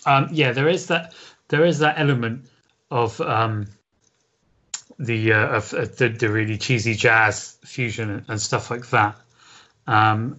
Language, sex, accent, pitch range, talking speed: English, male, British, 110-135 Hz, 155 wpm